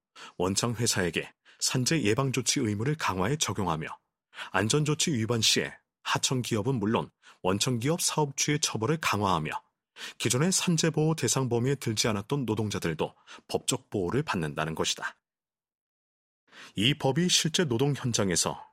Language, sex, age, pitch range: Korean, male, 30-49, 105-145 Hz